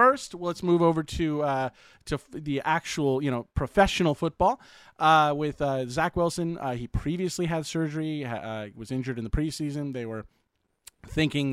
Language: English